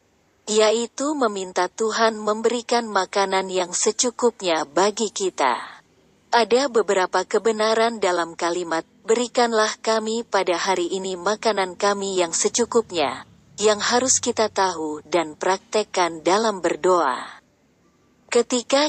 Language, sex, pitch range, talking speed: Indonesian, female, 185-230 Hz, 100 wpm